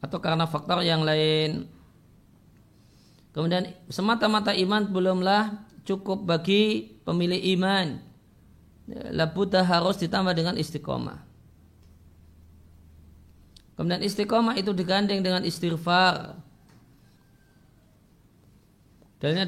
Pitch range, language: 155-190 Hz, Indonesian